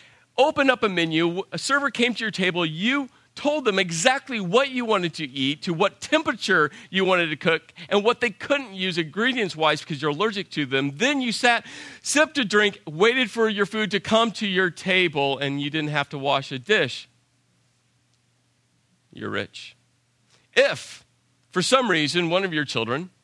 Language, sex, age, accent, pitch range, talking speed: English, male, 40-59, American, 165-235 Hz, 180 wpm